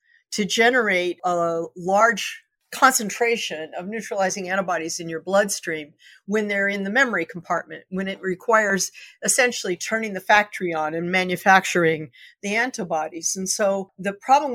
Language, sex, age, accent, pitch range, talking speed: English, female, 50-69, American, 180-230 Hz, 135 wpm